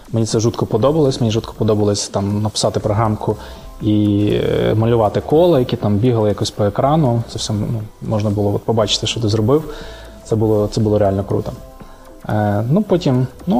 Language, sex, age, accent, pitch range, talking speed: Ukrainian, male, 20-39, native, 105-130 Hz, 170 wpm